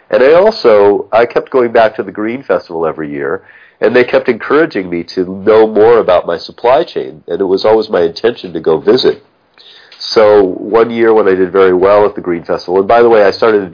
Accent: American